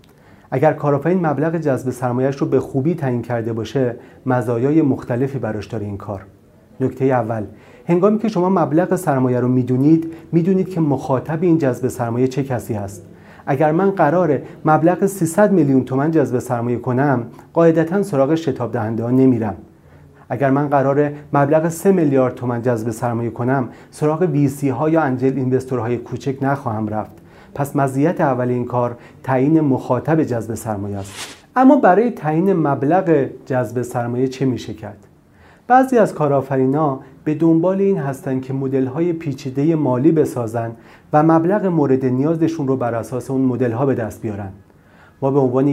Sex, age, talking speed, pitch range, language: male, 40-59, 150 wpm, 120-155 Hz, Persian